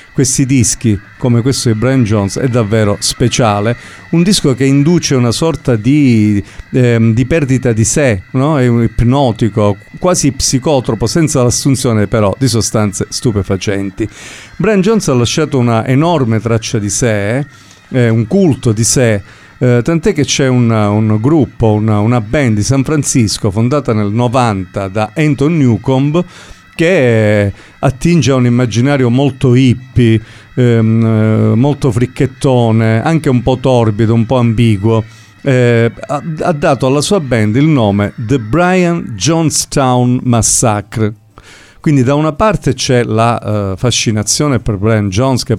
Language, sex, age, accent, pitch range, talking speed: Italian, male, 50-69, native, 110-135 Hz, 140 wpm